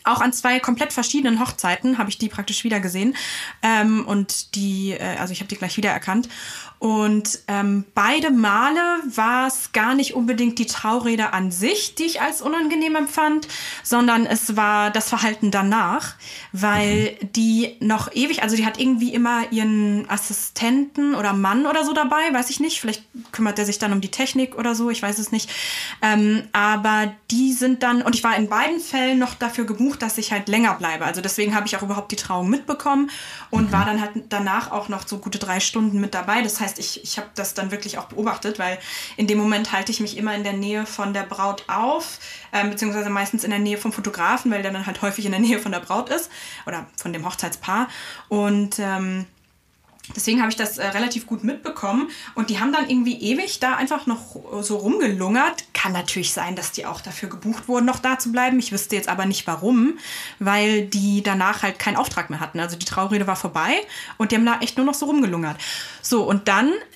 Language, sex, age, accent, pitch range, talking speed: German, female, 20-39, German, 200-250 Hz, 210 wpm